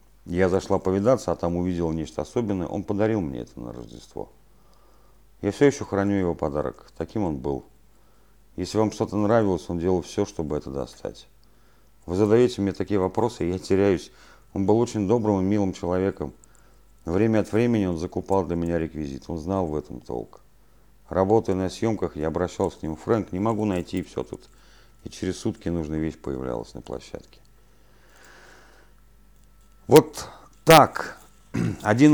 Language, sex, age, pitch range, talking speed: Russian, male, 40-59, 80-105 Hz, 160 wpm